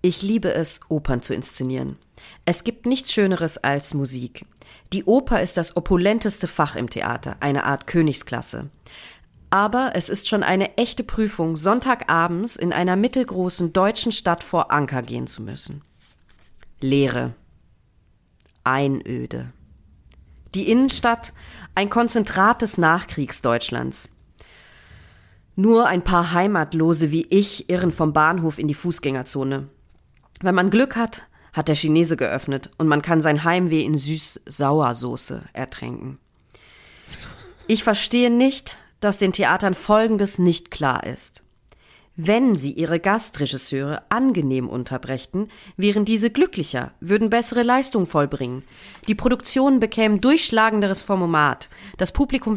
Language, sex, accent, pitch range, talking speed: German, female, German, 140-225 Hz, 125 wpm